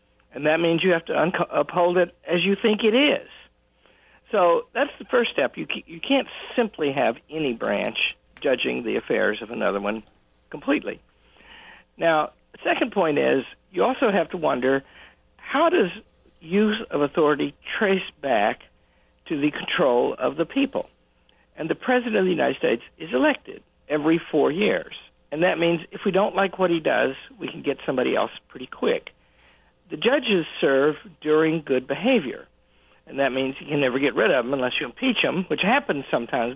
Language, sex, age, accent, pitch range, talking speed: English, male, 60-79, American, 155-245 Hz, 180 wpm